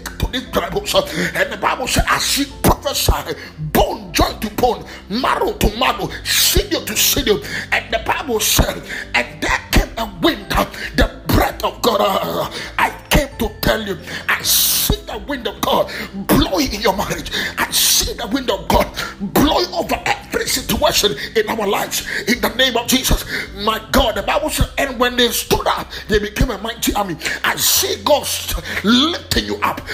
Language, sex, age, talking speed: English, male, 30-49, 160 wpm